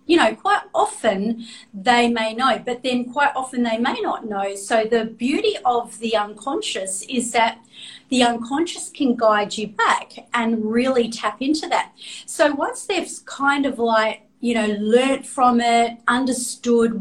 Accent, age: Australian, 40-59